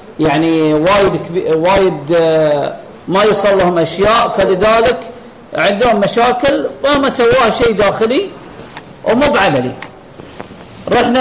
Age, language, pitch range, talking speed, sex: 40-59, Arabic, 185-235 Hz, 100 wpm, male